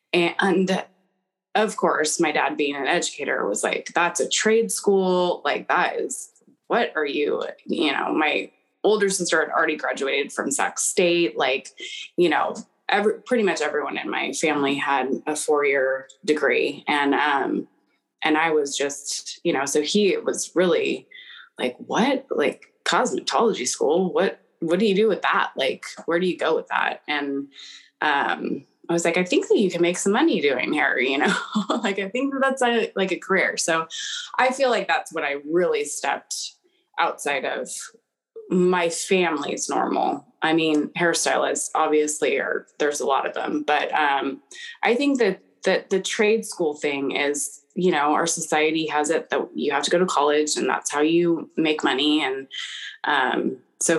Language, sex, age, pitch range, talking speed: English, female, 20-39, 150-240 Hz, 175 wpm